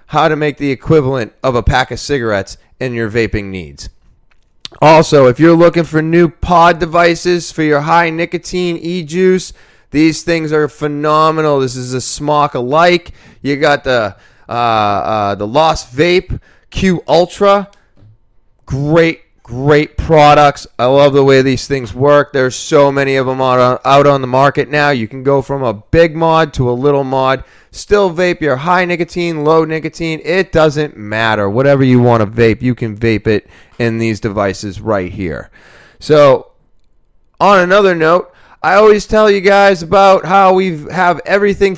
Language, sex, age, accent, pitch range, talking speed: English, male, 20-39, American, 130-175 Hz, 165 wpm